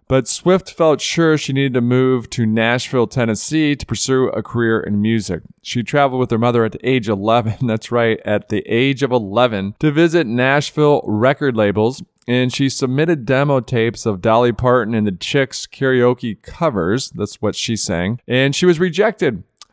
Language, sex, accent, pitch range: English, male, American, 110-145 Hz